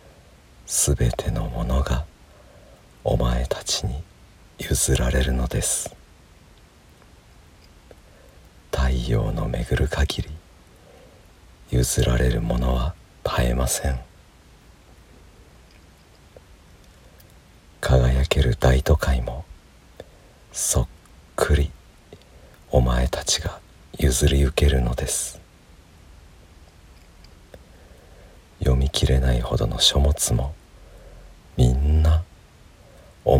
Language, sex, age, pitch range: Japanese, male, 50-69, 65-80 Hz